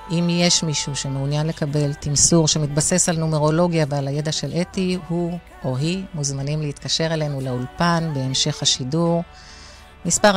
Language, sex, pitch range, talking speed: Hebrew, female, 145-170 Hz, 135 wpm